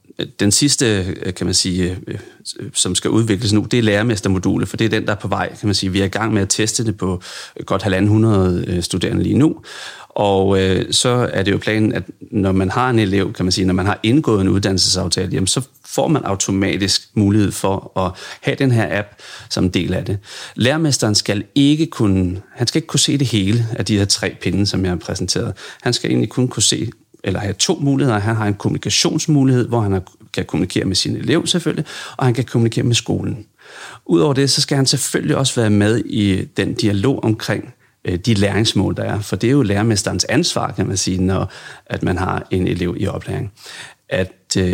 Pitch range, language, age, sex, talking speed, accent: 95-120 Hz, Danish, 40-59, male, 205 wpm, native